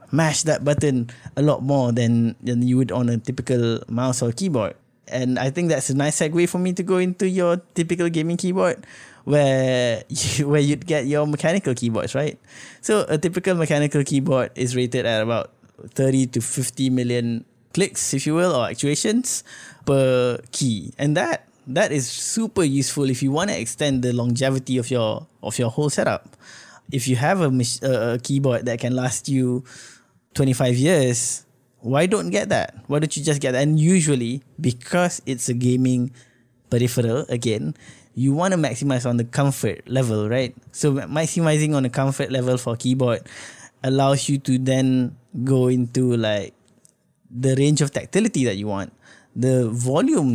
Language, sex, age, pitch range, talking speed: English, male, 20-39, 125-145 Hz, 175 wpm